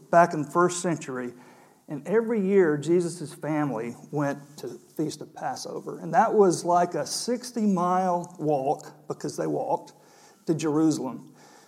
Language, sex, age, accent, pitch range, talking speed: English, male, 50-69, American, 155-190 Hz, 145 wpm